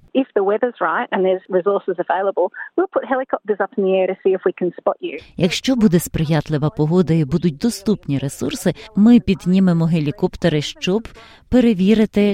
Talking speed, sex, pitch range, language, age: 65 wpm, female, 155-205 Hz, Ukrainian, 30-49